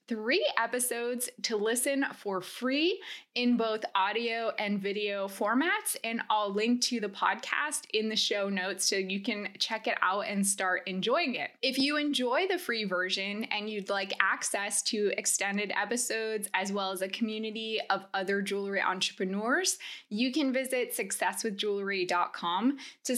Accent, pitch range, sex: American, 200-260 Hz, female